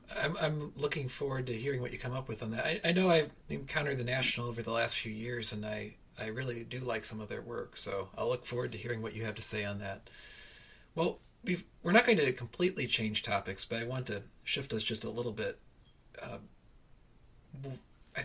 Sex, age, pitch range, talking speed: male, 40-59, 115-140 Hz, 225 wpm